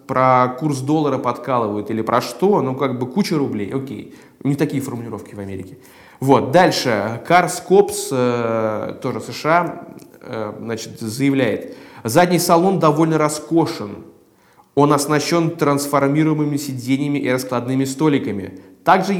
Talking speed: 120 wpm